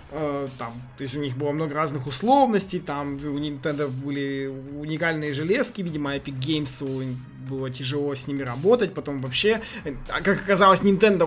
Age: 20-39